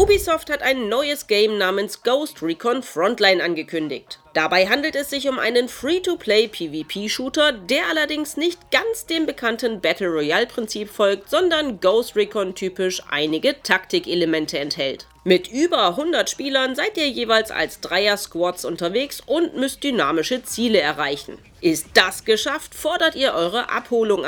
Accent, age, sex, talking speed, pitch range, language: German, 40-59, female, 130 wpm, 185-285 Hz, German